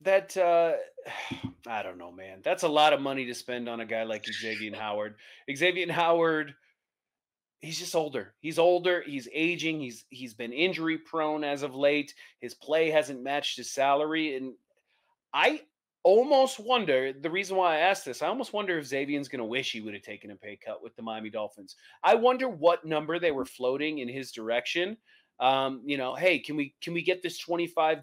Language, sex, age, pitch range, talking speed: English, male, 30-49, 135-180 Hz, 195 wpm